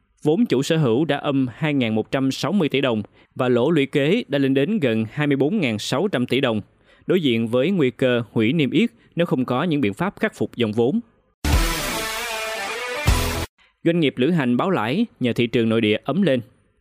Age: 20-39